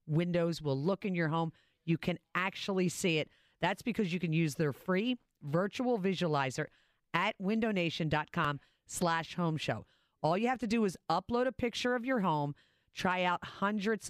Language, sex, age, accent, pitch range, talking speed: English, female, 40-59, American, 155-205 Hz, 165 wpm